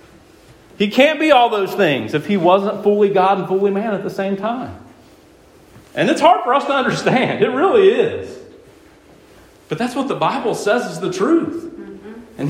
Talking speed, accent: 180 wpm, American